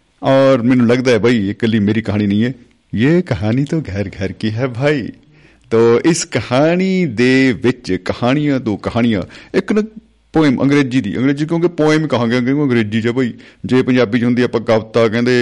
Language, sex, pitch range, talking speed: Punjabi, male, 110-140 Hz, 165 wpm